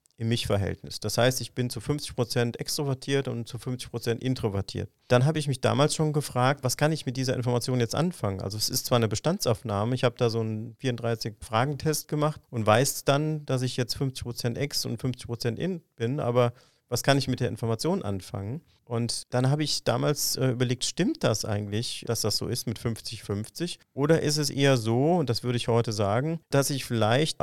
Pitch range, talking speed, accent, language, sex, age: 115-135 Hz, 200 wpm, German, German, male, 40-59